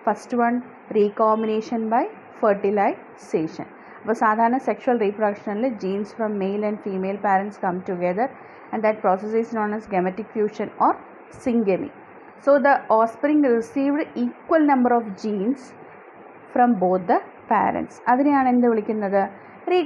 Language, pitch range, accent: Malayalam, 200-245 Hz, native